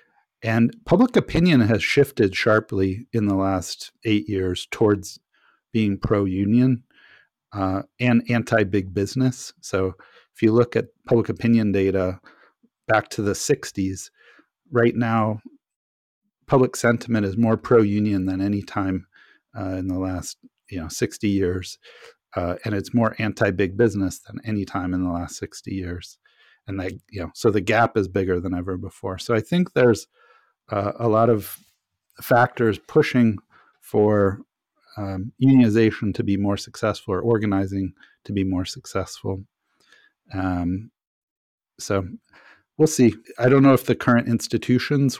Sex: male